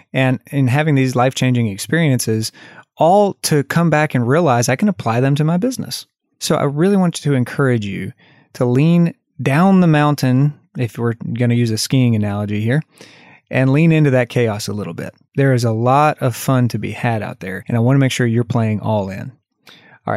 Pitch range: 120-155 Hz